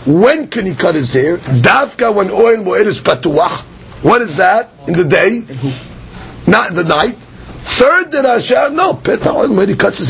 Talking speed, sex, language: 180 wpm, male, English